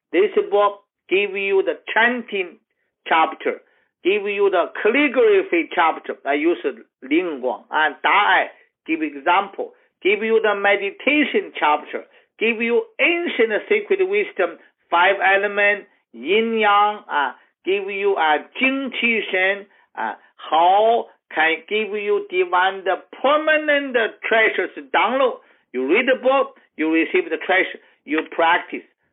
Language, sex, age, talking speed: English, male, 50-69, 125 wpm